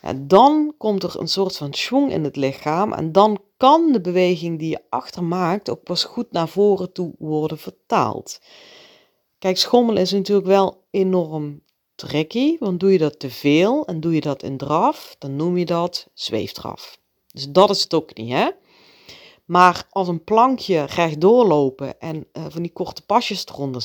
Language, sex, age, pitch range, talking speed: Dutch, female, 40-59, 155-205 Hz, 180 wpm